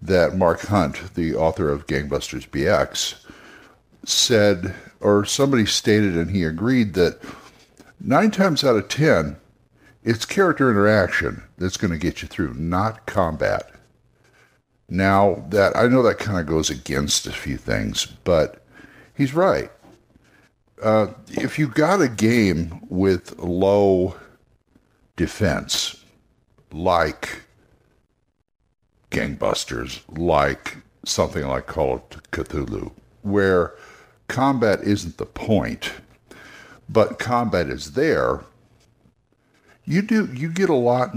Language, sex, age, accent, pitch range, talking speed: English, male, 60-79, American, 85-120 Hz, 115 wpm